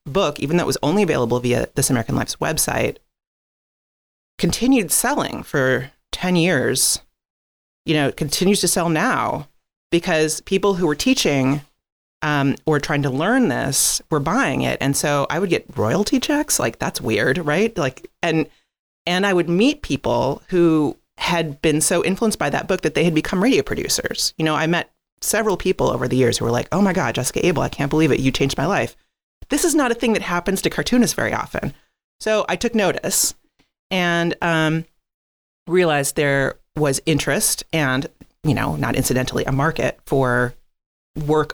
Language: English